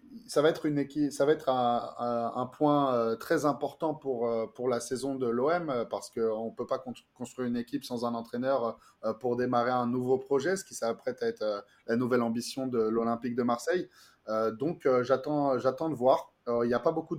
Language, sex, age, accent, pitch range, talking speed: French, male, 20-39, French, 120-145 Hz, 200 wpm